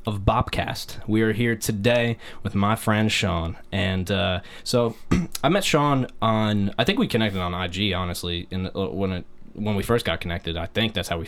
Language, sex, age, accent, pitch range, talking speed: English, male, 20-39, American, 95-115 Hz, 195 wpm